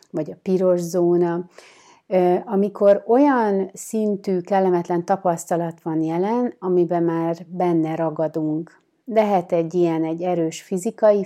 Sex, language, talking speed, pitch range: female, Hungarian, 110 wpm, 165-190 Hz